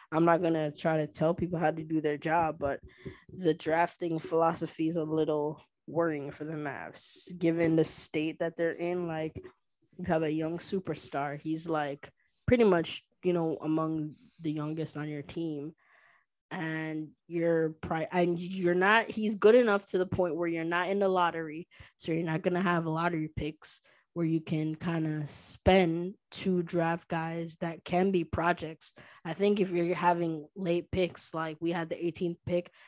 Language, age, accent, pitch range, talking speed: English, 20-39, American, 155-175 Hz, 180 wpm